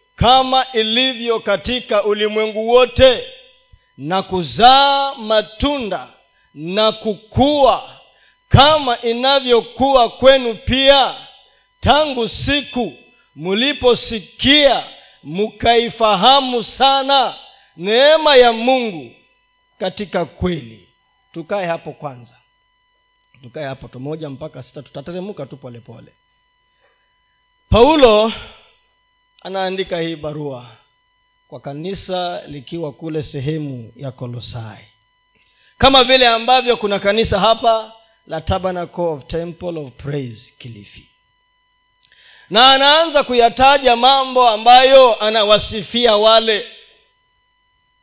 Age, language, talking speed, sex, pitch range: 40-59, Swahili, 80 wpm, male, 180-290 Hz